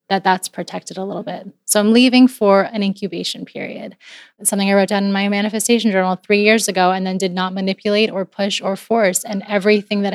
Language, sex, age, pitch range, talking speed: English, female, 20-39, 185-225 Hz, 215 wpm